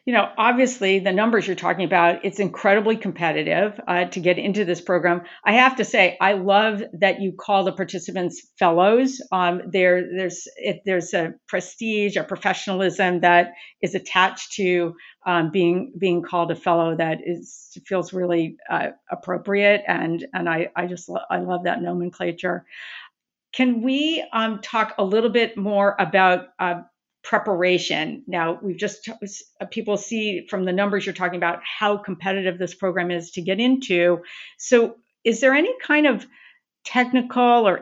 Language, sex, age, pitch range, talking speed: English, female, 50-69, 180-215 Hz, 165 wpm